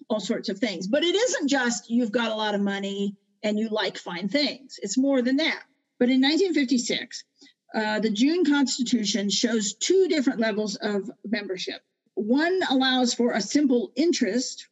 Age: 50-69